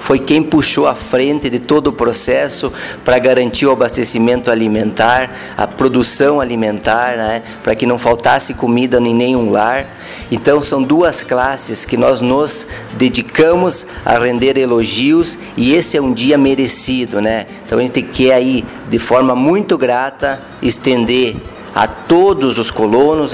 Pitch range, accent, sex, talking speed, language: 120-150 Hz, Brazilian, male, 145 wpm, Portuguese